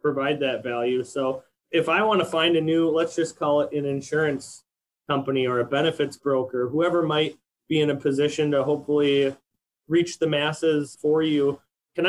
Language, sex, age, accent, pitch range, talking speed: English, male, 20-39, American, 140-175 Hz, 180 wpm